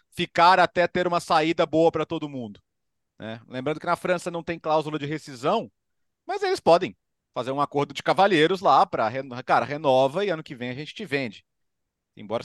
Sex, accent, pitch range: male, Brazilian, 120-165 Hz